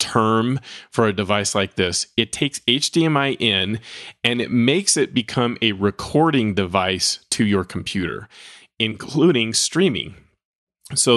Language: English